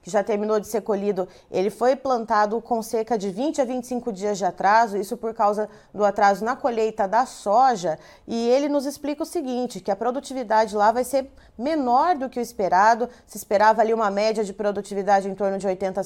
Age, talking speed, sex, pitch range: 20-39, 205 wpm, female, 200-260 Hz